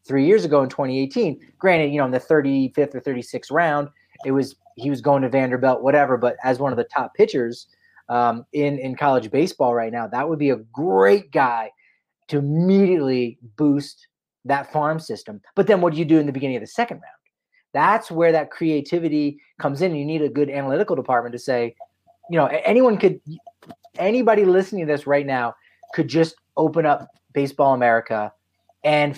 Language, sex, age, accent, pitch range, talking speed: English, male, 30-49, American, 125-160 Hz, 190 wpm